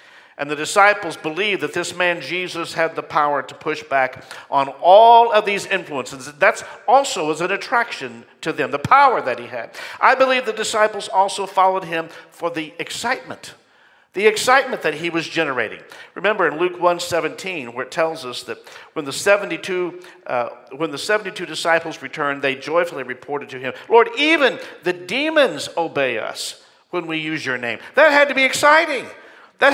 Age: 50-69